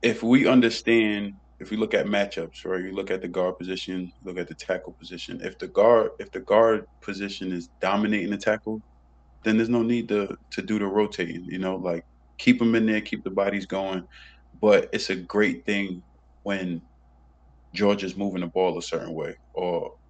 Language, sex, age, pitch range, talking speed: English, male, 20-39, 85-100 Hz, 195 wpm